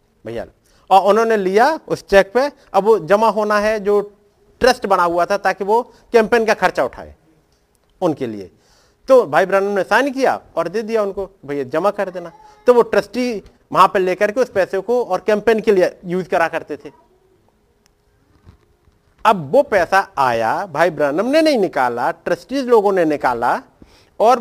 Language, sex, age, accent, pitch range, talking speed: Hindi, male, 50-69, native, 185-235 Hz, 175 wpm